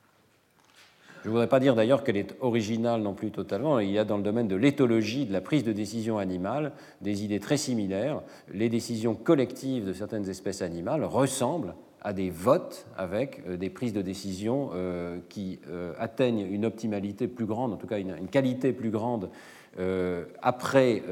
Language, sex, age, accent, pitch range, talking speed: French, male, 50-69, French, 100-130 Hz, 170 wpm